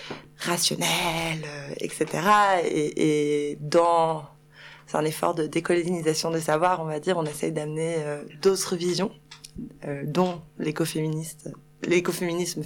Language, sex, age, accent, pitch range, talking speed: French, female, 20-39, French, 150-185 Hz, 120 wpm